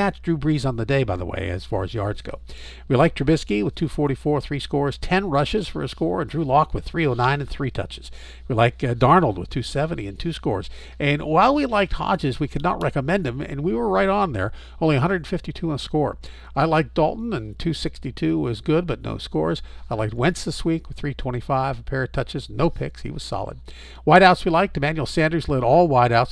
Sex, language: male, English